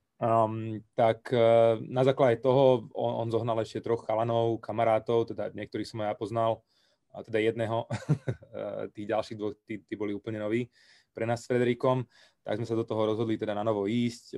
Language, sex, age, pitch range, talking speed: Slovak, male, 20-39, 105-120 Hz, 175 wpm